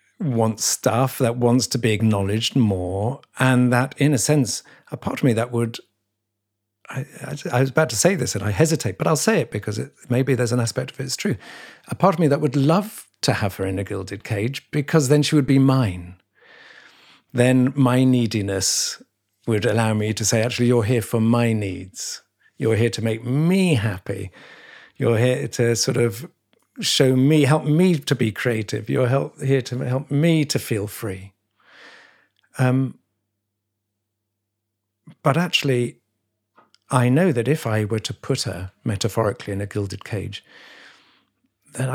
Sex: male